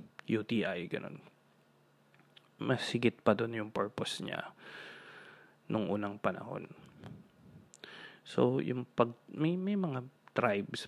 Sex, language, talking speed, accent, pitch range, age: male, Filipino, 100 wpm, native, 105-120 Hz, 20-39